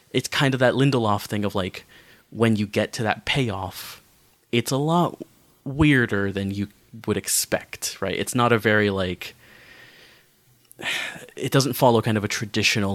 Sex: male